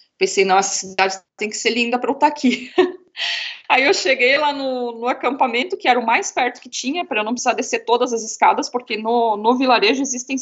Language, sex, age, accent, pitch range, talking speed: Portuguese, female, 20-39, Brazilian, 200-260 Hz, 220 wpm